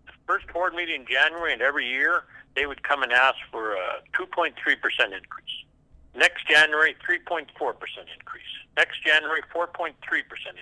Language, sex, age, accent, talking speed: English, male, 60-79, American, 135 wpm